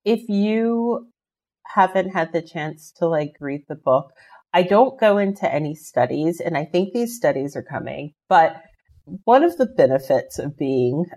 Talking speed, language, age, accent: 165 wpm, English, 40-59, American